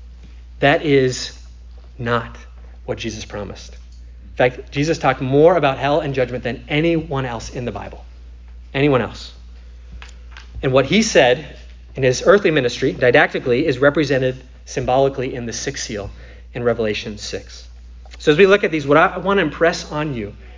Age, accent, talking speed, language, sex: 30-49, American, 160 wpm, English, male